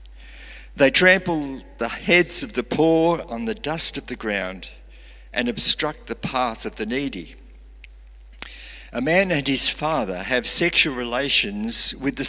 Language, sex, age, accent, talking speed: English, male, 50-69, Australian, 145 wpm